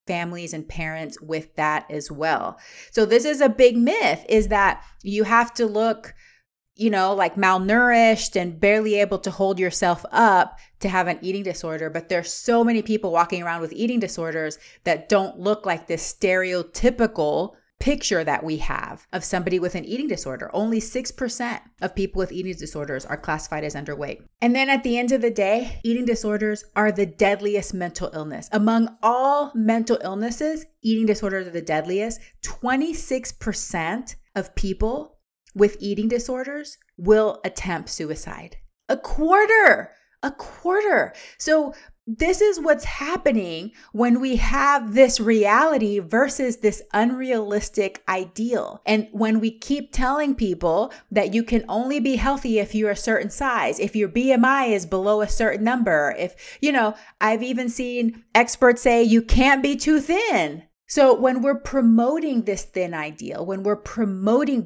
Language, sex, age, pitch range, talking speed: English, female, 30-49, 190-250 Hz, 160 wpm